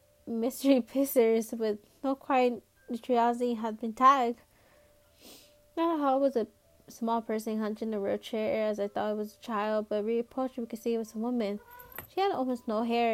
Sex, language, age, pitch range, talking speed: female, English, 20-39, 215-260 Hz, 195 wpm